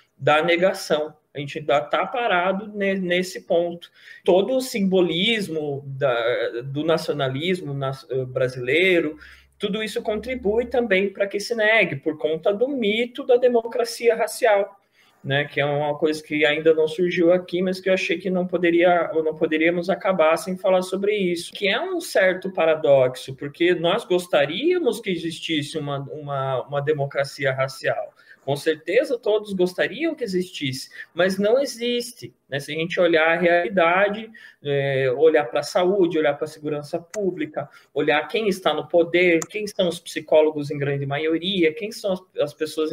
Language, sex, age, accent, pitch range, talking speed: Portuguese, male, 20-39, Brazilian, 145-195 Hz, 155 wpm